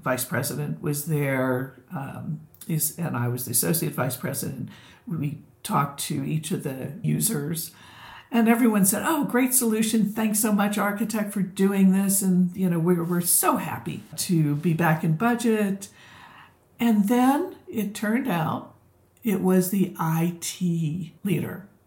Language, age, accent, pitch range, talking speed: English, 60-79, American, 155-205 Hz, 150 wpm